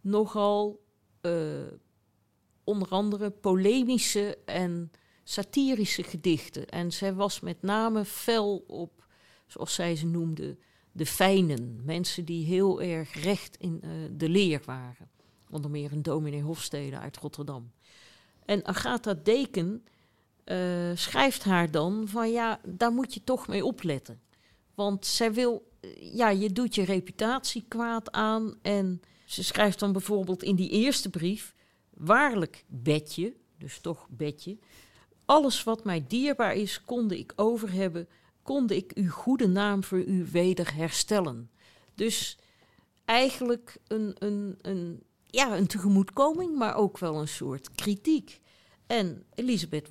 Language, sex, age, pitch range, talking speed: Dutch, female, 50-69, 165-220 Hz, 130 wpm